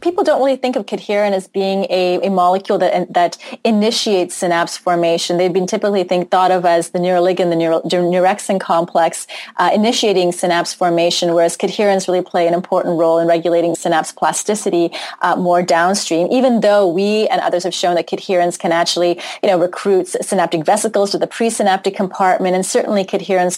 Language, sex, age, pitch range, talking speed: English, female, 30-49, 175-200 Hz, 180 wpm